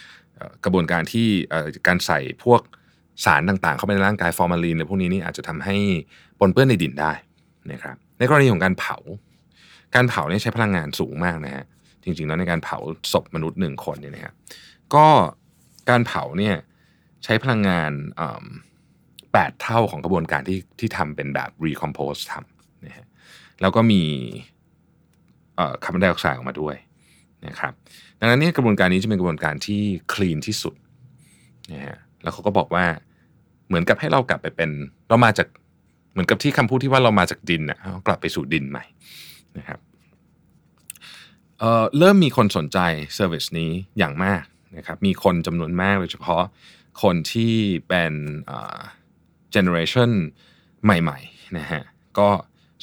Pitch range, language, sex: 80-110 Hz, Thai, male